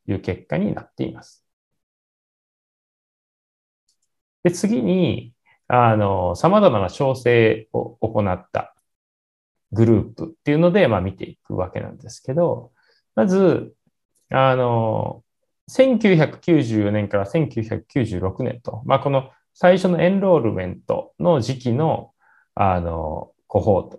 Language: Japanese